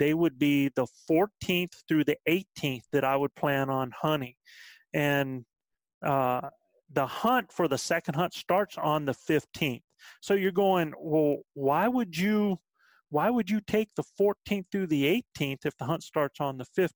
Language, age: English, 40-59